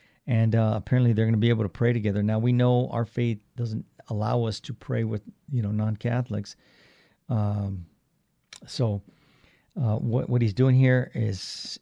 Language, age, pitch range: English, 50-69, 110-125 Hz